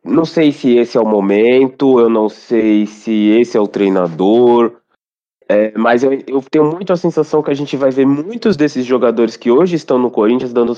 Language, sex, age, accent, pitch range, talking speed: Portuguese, male, 20-39, Brazilian, 120-185 Hz, 205 wpm